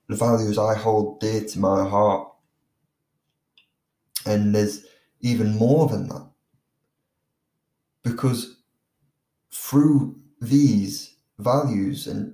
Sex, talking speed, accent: male, 90 wpm, British